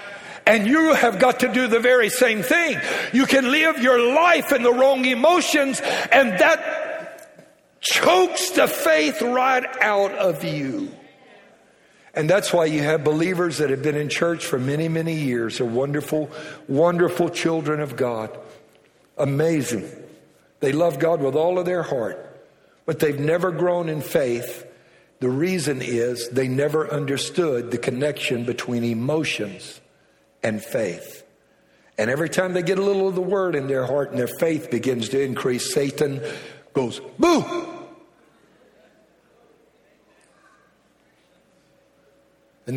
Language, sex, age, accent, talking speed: English, male, 60-79, American, 140 wpm